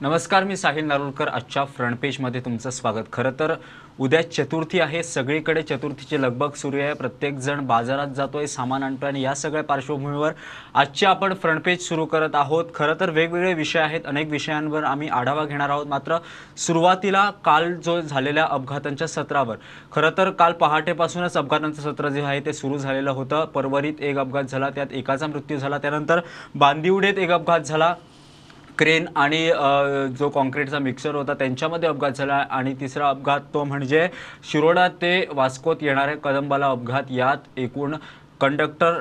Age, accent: 20-39, Indian